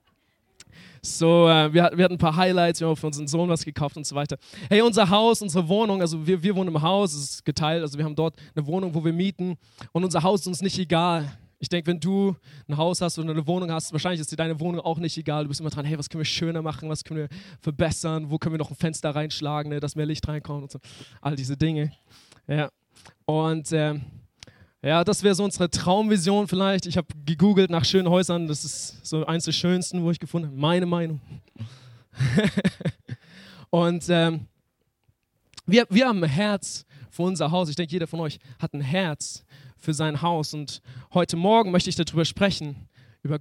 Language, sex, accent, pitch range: German, male, German, 145-175 Hz